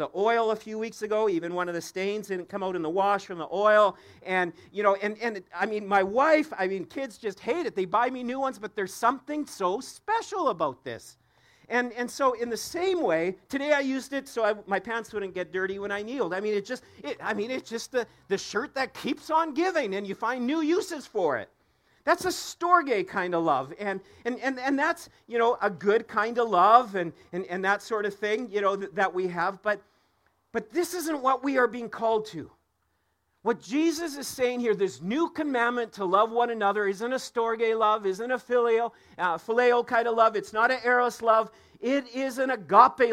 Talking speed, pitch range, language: 230 wpm, 200-265 Hz, English